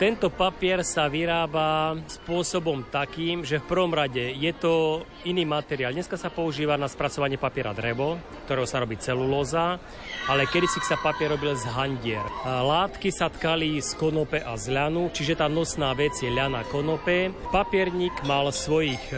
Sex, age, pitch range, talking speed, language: male, 30-49, 140-175 Hz, 155 wpm, Slovak